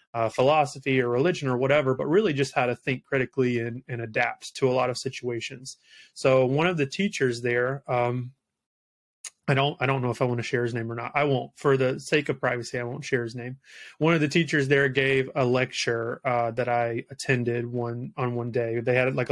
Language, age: English, 30-49